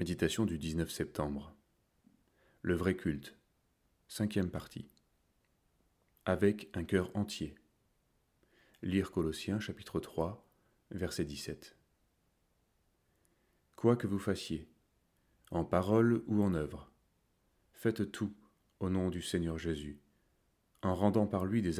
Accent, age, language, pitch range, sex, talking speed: French, 30-49, French, 80-100 Hz, male, 110 wpm